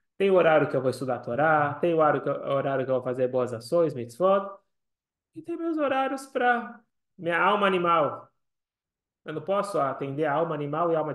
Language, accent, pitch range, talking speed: Portuguese, Brazilian, 135-180 Hz, 195 wpm